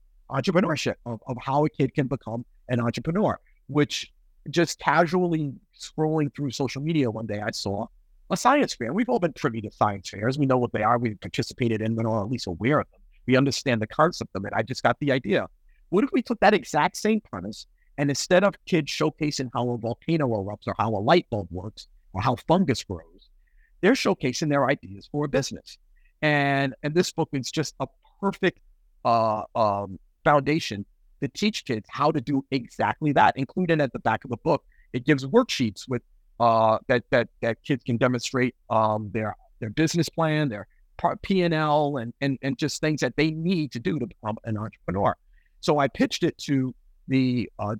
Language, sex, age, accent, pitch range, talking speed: English, male, 50-69, American, 110-150 Hz, 200 wpm